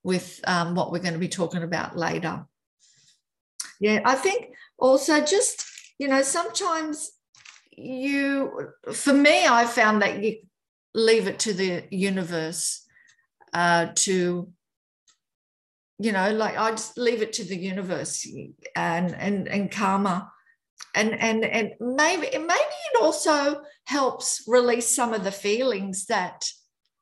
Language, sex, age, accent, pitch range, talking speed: English, female, 50-69, Australian, 185-255 Hz, 135 wpm